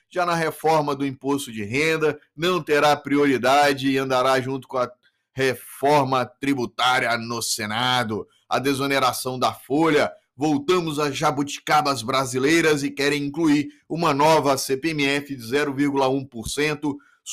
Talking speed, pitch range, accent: 120 wpm, 135-165 Hz, Brazilian